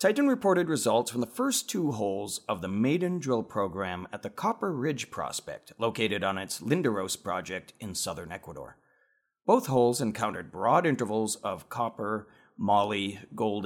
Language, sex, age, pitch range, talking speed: English, male, 40-59, 105-150 Hz, 155 wpm